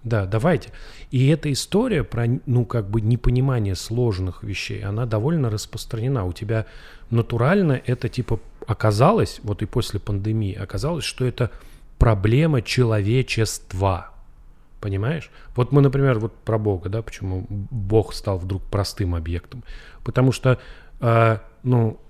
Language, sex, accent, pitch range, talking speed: Russian, male, native, 100-125 Hz, 130 wpm